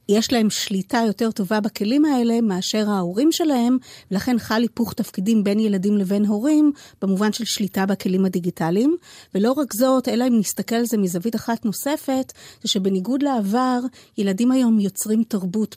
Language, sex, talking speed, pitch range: Hebrew, female, 155 wpm, 200-240 Hz